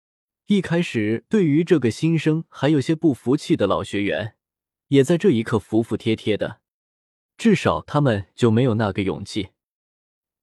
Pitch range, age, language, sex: 105-155 Hz, 20-39, Chinese, male